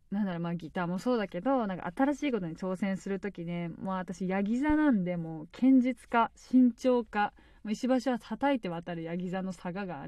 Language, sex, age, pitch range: Japanese, female, 20-39, 180-255 Hz